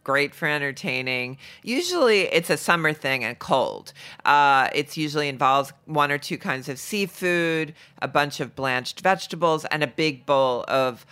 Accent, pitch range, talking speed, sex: American, 125-155 Hz, 160 wpm, female